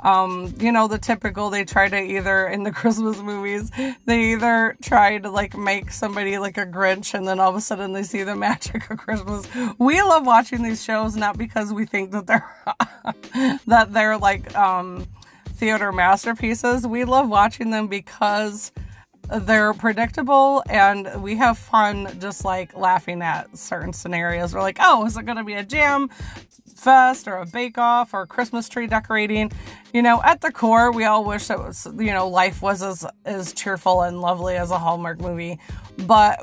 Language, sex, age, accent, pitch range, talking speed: English, female, 20-39, American, 195-230 Hz, 185 wpm